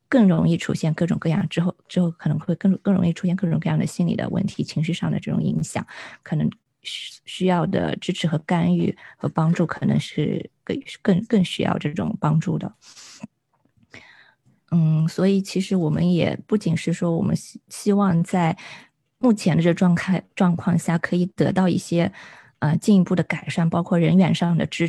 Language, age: Chinese, 20-39